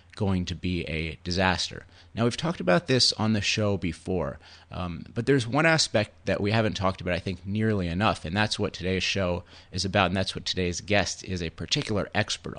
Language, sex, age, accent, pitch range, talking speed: English, male, 30-49, American, 90-110 Hz, 210 wpm